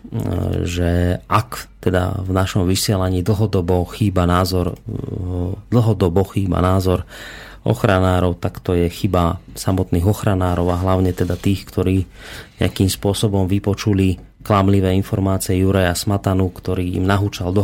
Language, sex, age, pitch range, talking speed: Slovak, male, 30-49, 95-115 Hz, 120 wpm